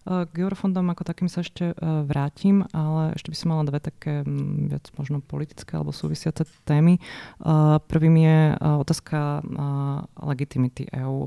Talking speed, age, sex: 135 wpm, 20-39, female